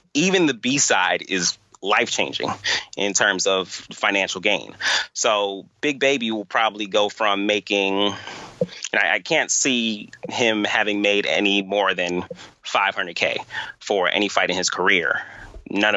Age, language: 30-49, English